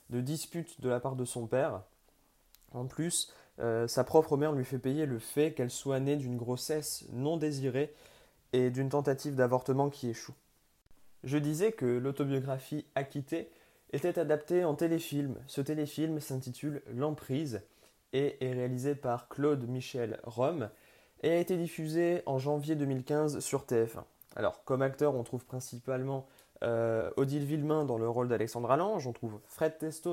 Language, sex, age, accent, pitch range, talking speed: French, male, 20-39, French, 125-150 Hz, 155 wpm